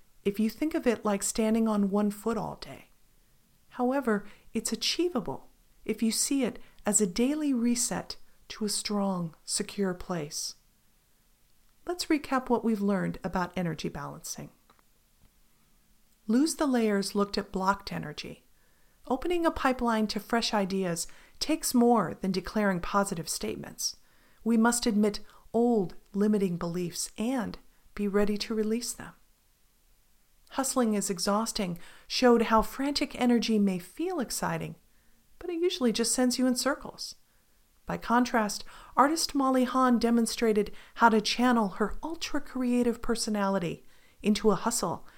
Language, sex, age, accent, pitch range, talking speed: English, female, 50-69, American, 200-245 Hz, 135 wpm